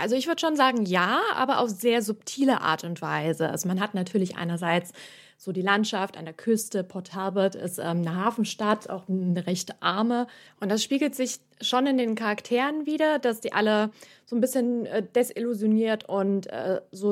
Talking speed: 190 wpm